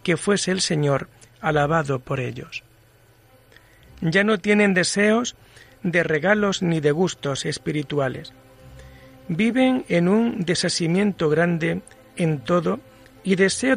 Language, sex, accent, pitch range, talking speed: Spanish, male, Spanish, 145-195 Hz, 115 wpm